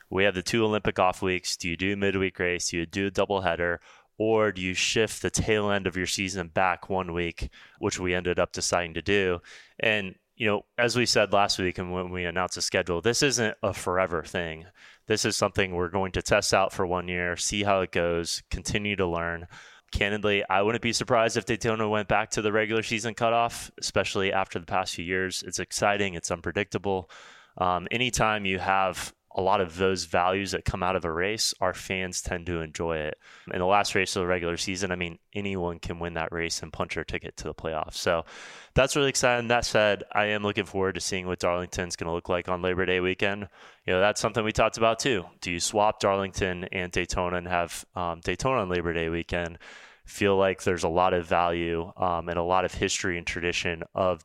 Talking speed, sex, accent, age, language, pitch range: 225 wpm, male, American, 20-39, English, 85-105 Hz